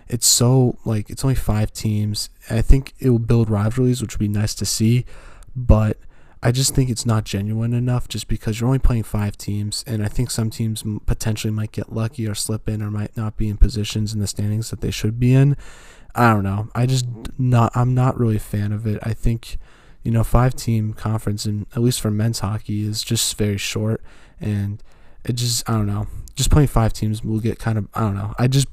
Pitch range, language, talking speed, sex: 105-115 Hz, English, 225 wpm, male